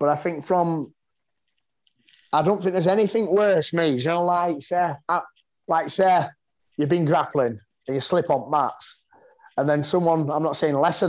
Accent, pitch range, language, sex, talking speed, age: British, 140-175 Hz, English, male, 180 wpm, 30-49